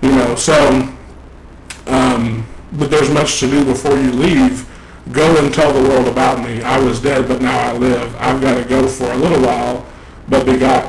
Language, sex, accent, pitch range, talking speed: English, male, American, 115-135 Hz, 200 wpm